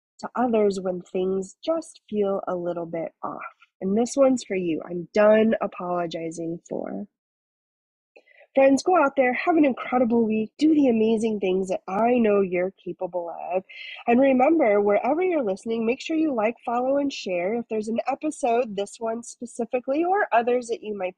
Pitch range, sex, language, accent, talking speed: 190-270 Hz, female, English, American, 175 wpm